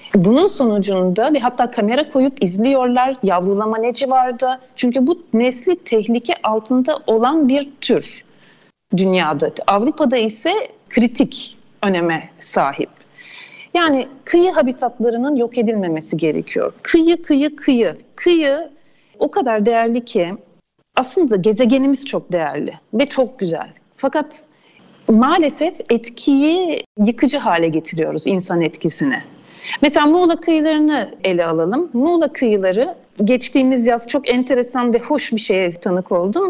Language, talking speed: Turkish, 115 wpm